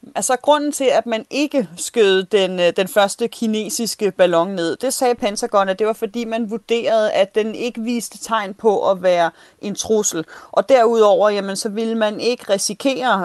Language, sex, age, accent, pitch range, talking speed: Danish, female, 30-49, native, 185-235 Hz, 180 wpm